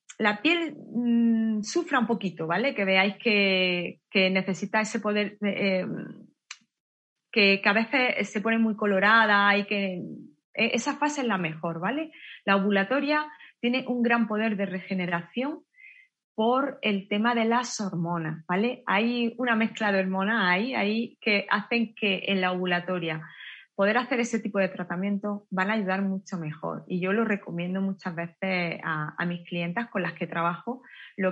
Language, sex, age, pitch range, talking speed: Spanish, female, 30-49, 185-230 Hz, 160 wpm